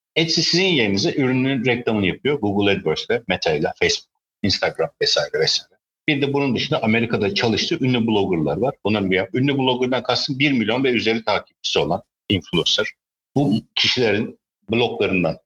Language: Turkish